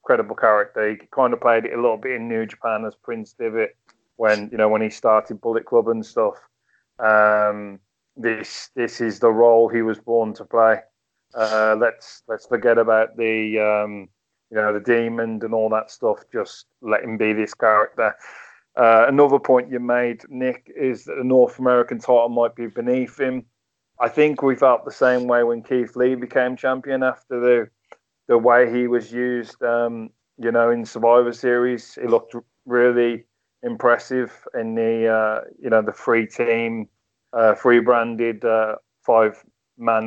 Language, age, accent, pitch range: English, 30-49, British, 110-120 Hz